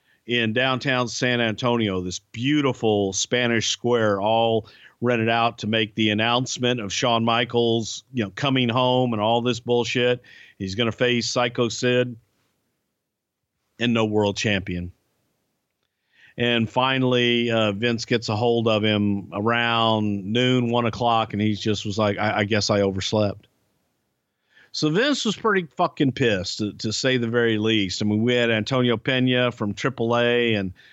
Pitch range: 105-125 Hz